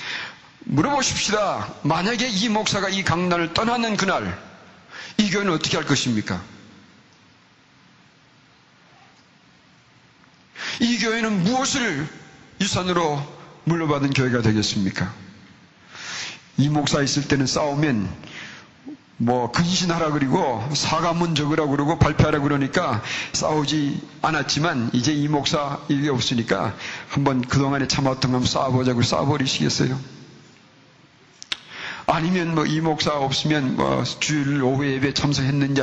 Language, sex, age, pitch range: Korean, male, 40-59, 125-155 Hz